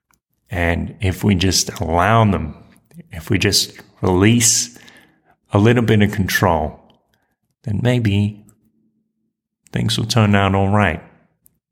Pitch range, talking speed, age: 90-110 Hz, 120 wpm, 30-49